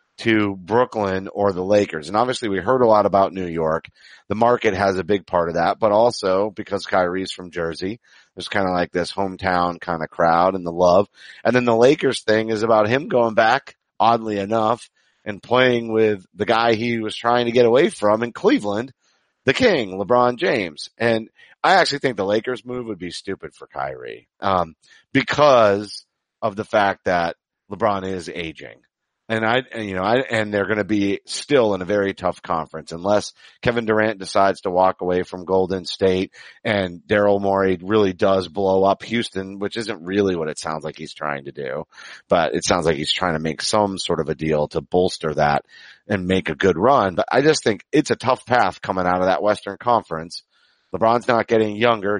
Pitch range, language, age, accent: 90-110 Hz, English, 40-59, American